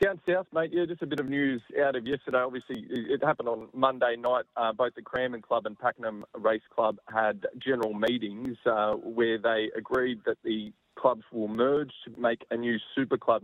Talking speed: 200 wpm